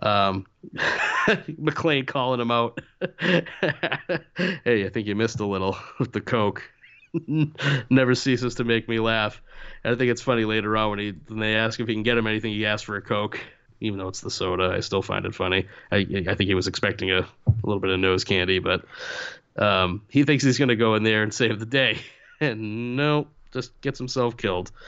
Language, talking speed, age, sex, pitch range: English, 210 wpm, 30-49, male, 105-135 Hz